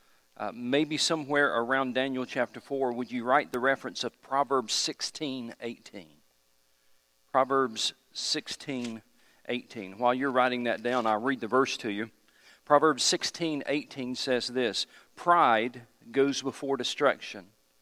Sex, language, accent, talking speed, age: male, English, American, 125 wpm, 50-69